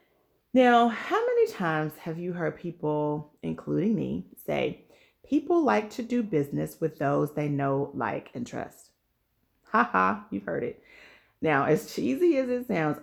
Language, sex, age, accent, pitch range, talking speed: English, female, 40-59, American, 145-220 Hz, 155 wpm